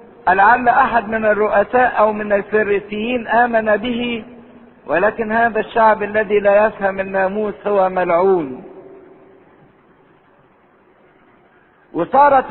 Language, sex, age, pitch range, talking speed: English, male, 50-69, 215-265 Hz, 90 wpm